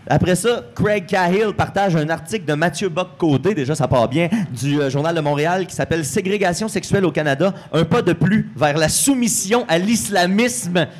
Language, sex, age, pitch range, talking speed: French, male, 30-49, 140-185 Hz, 185 wpm